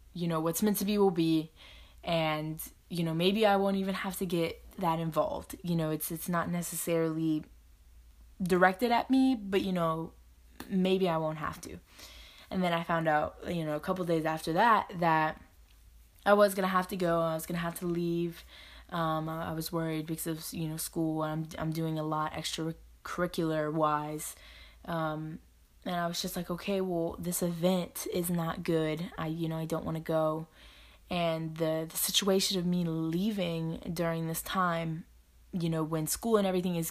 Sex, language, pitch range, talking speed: female, English, 160-185 Hz, 195 wpm